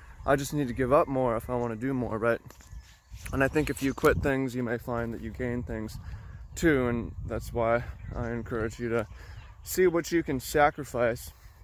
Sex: male